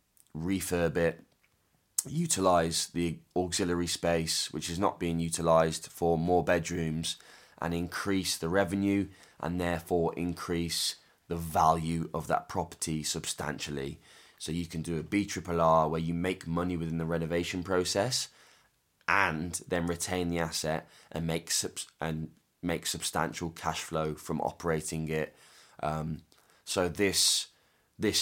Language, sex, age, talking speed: English, male, 20-39, 135 wpm